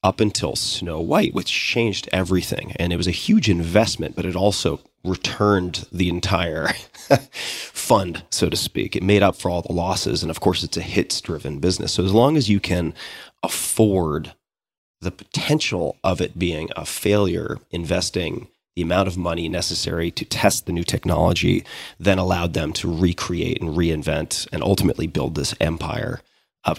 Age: 30-49